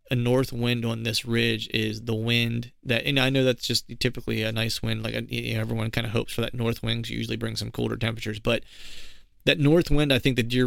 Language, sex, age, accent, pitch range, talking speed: English, male, 30-49, American, 115-130 Hz, 240 wpm